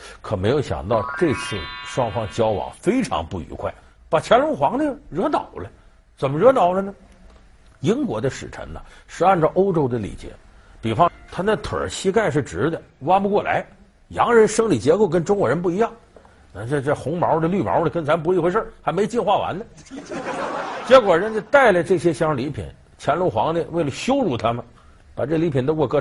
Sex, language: male, Chinese